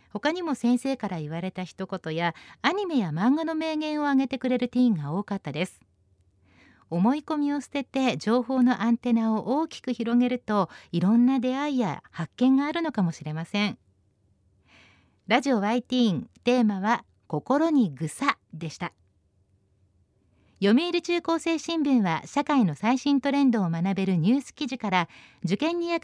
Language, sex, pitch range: Japanese, female, 165-275 Hz